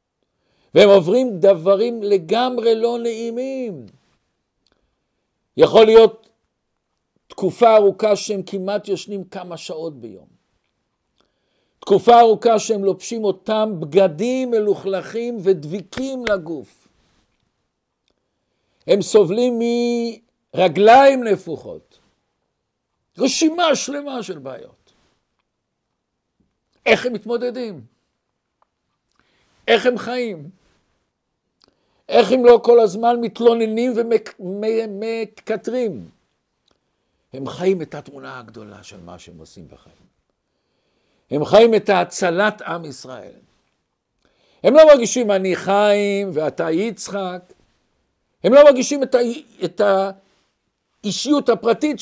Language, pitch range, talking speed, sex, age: Hebrew, 190-235 Hz, 90 wpm, male, 60-79